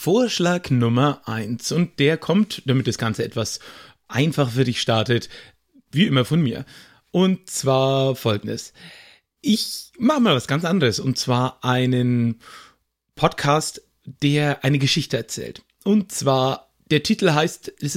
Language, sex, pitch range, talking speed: German, male, 125-165 Hz, 135 wpm